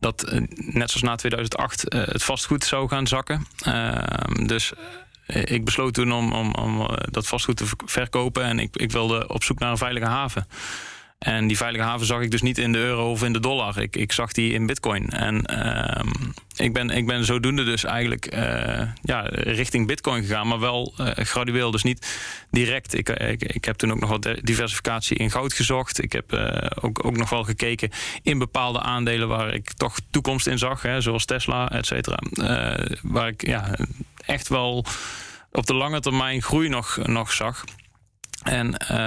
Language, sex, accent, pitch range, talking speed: Dutch, male, Dutch, 115-125 Hz, 180 wpm